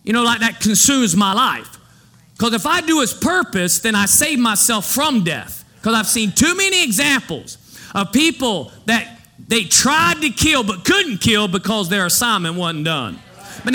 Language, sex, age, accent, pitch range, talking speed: English, male, 40-59, American, 170-235 Hz, 180 wpm